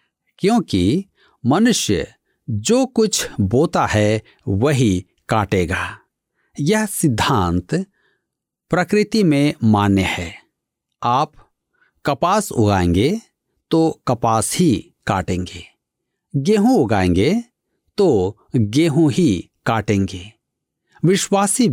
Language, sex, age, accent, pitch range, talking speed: Hindi, male, 50-69, native, 105-160 Hz, 75 wpm